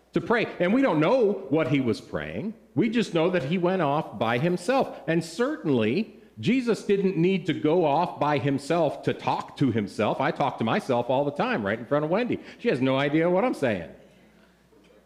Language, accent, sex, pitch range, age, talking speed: English, American, male, 120-195 Hz, 40-59, 205 wpm